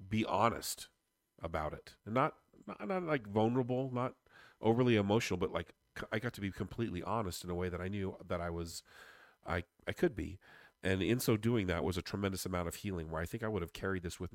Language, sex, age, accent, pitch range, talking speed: English, male, 40-59, American, 85-110 Hz, 225 wpm